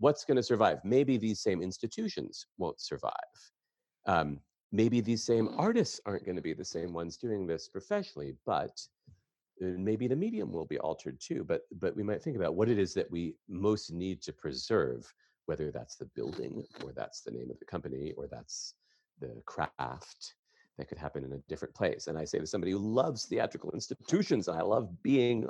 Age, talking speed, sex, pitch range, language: 40-59, 190 wpm, male, 80-110 Hz, English